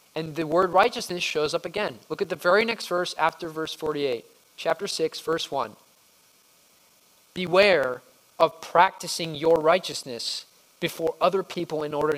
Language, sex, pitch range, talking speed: English, male, 135-180 Hz, 150 wpm